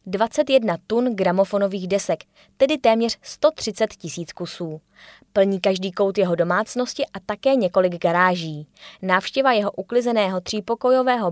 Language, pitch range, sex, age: Czech, 185-230 Hz, female, 20-39